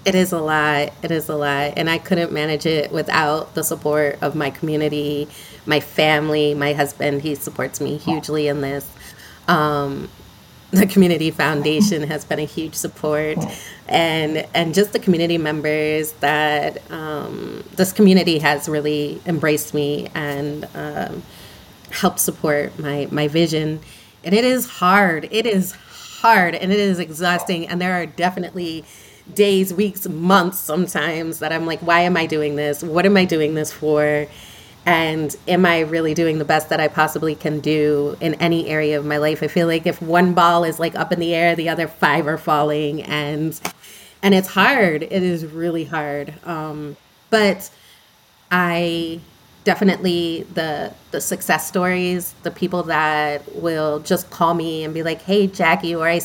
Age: 30-49